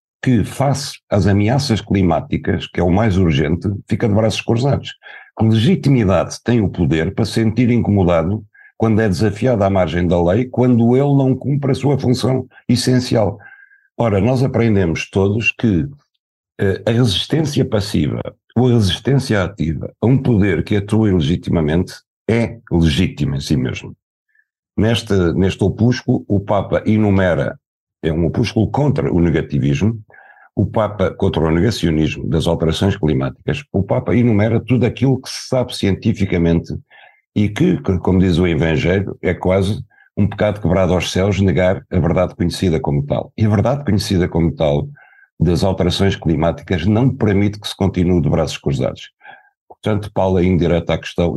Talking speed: 155 wpm